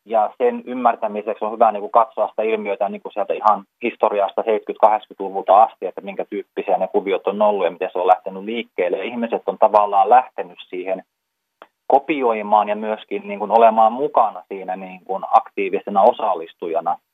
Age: 30-49